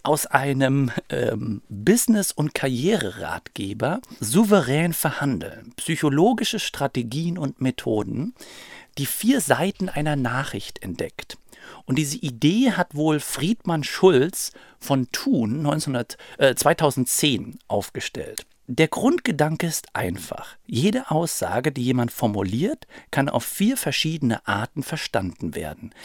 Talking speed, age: 110 wpm, 50-69